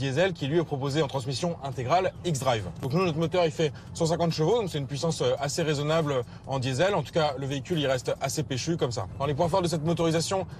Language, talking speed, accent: French, 245 wpm, French